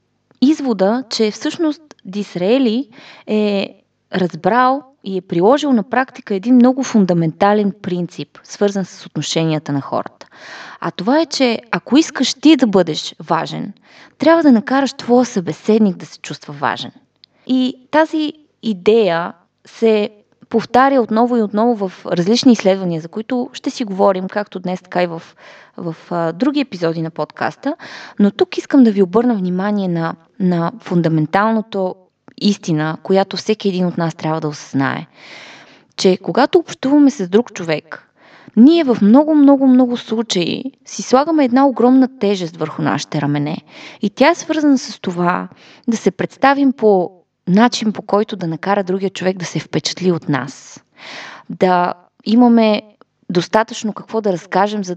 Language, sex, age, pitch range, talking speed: Bulgarian, female, 20-39, 175-245 Hz, 145 wpm